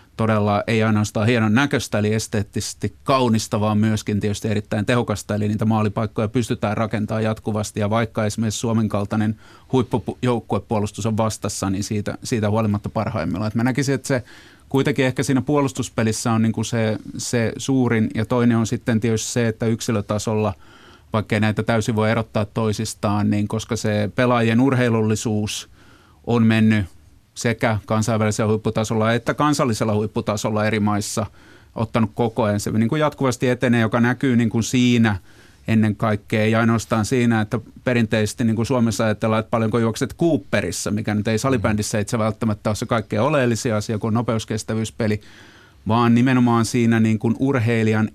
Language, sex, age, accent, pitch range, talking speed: Finnish, male, 30-49, native, 105-120 Hz, 150 wpm